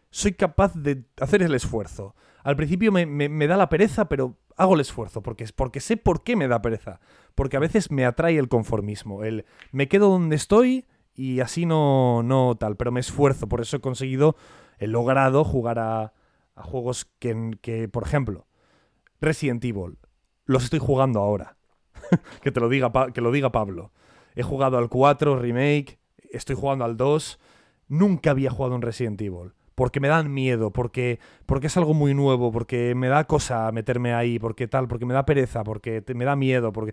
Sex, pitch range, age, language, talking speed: male, 120-155 Hz, 30-49, Spanish, 185 wpm